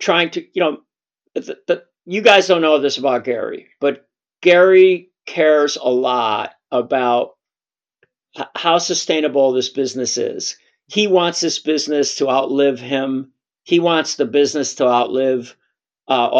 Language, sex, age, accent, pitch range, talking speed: English, male, 50-69, American, 130-165 Hz, 145 wpm